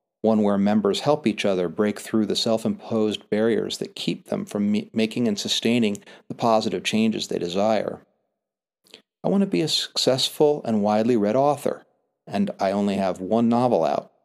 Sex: male